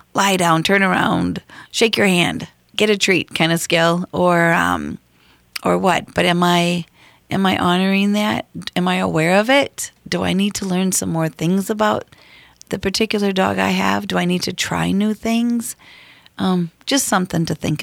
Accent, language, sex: American, English, female